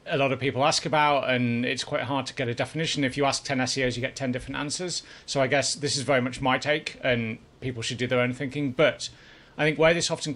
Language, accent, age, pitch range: English, British, 30-49, 125-150 Hz